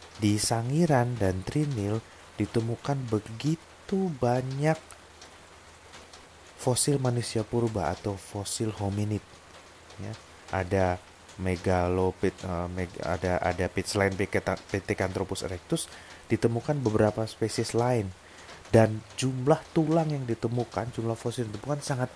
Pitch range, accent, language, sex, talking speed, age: 90-110 Hz, native, Indonesian, male, 95 wpm, 30-49